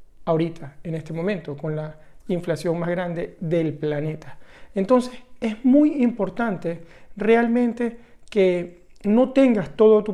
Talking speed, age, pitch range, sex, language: 125 wpm, 40-59, 175-230 Hz, male, Spanish